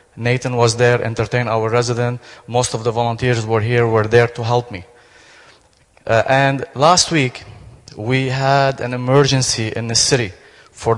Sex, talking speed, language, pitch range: male, 165 wpm, English, 110-130 Hz